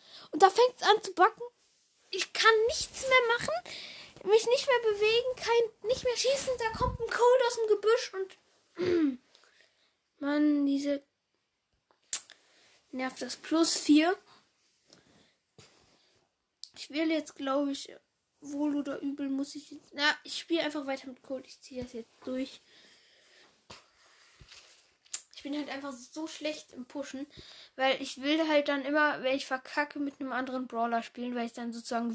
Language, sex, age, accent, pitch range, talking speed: German, female, 10-29, German, 250-330 Hz, 155 wpm